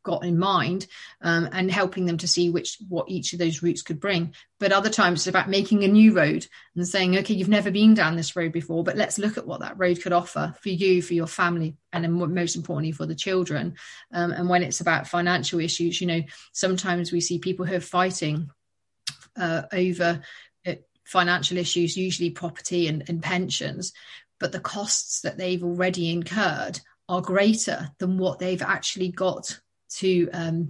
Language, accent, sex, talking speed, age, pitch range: English, British, female, 190 wpm, 40-59, 165-185 Hz